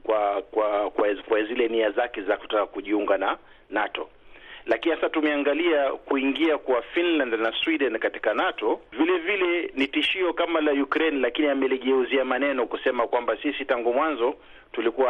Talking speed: 155 wpm